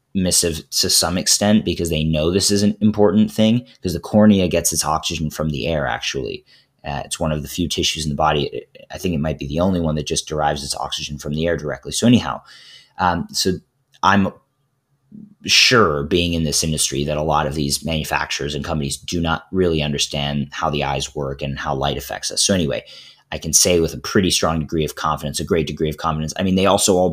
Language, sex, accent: English, male, American